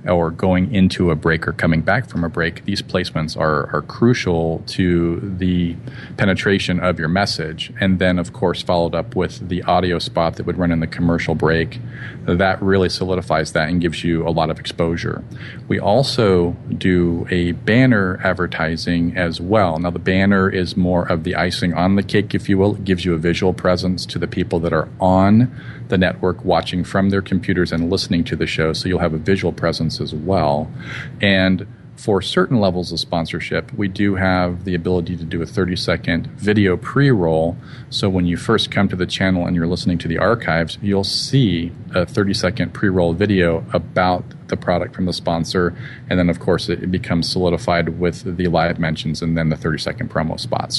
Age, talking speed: 40-59, 195 wpm